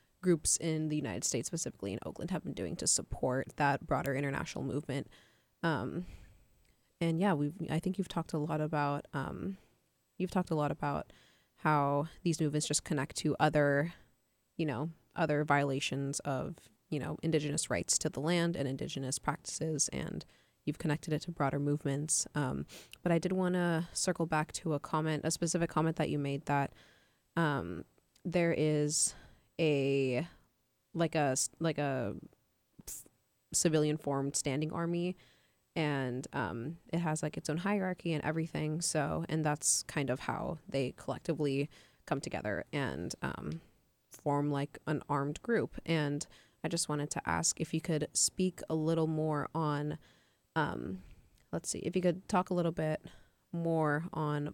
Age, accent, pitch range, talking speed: 20-39, American, 140-165 Hz, 160 wpm